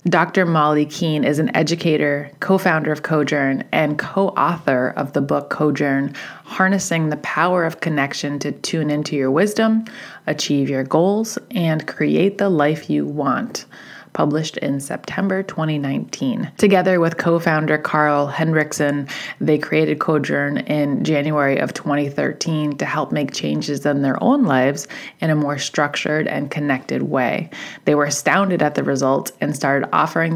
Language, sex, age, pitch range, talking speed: English, female, 20-39, 145-180 Hz, 150 wpm